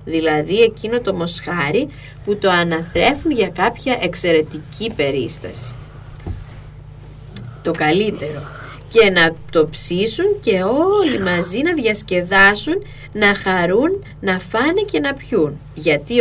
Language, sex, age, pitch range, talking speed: Greek, female, 20-39, 140-235 Hz, 110 wpm